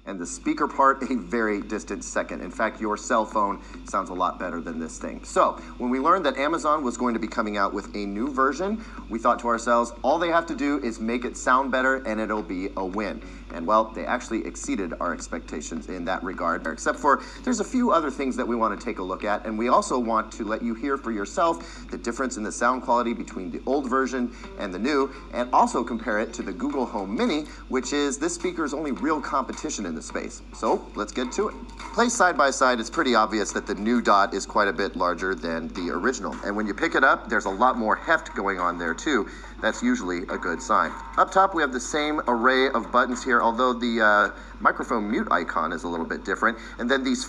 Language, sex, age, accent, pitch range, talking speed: English, male, 30-49, American, 110-135 Hz, 240 wpm